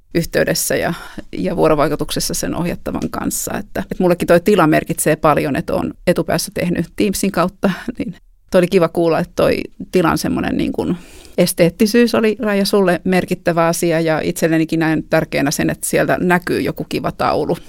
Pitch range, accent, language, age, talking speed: 165-185 Hz, native, Finnish, 30-49, 155 wpm